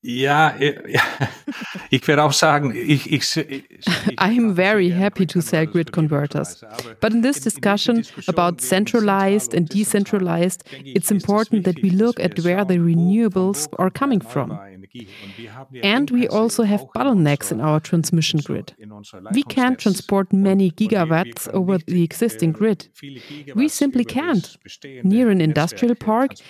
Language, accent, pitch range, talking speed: German, German, 165-215 Hz, 120 wpm